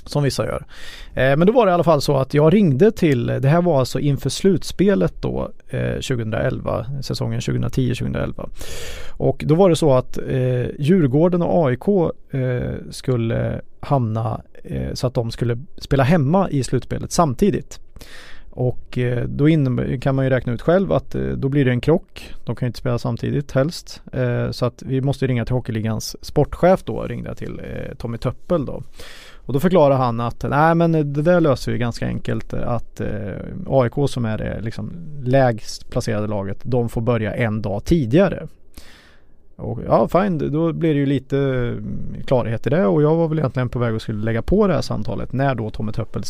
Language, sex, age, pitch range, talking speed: Swedish, male, 30-49, 115-155 Hz, 190 wpm